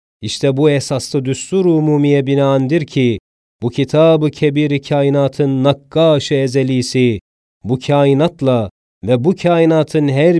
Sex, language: male, Turkish